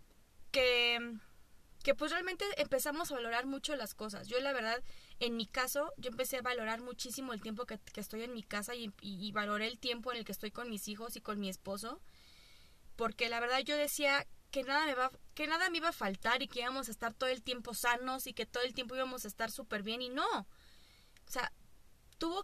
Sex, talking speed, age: female, 225 wpm, 20-39